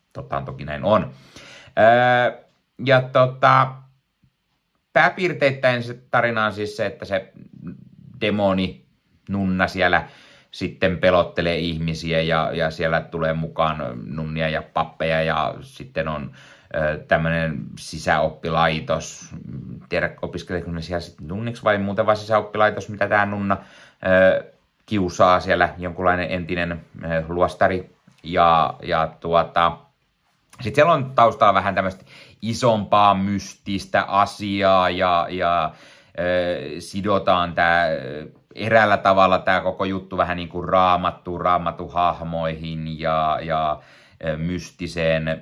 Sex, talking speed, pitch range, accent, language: male, 110 wpm, 85-100 Hz, native, Finnish